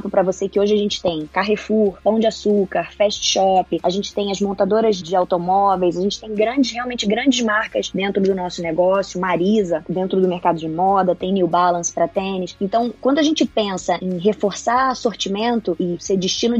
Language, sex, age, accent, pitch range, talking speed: Portuguese, female, 20-39, Brazilian, 185-220 Hz, 190 wpm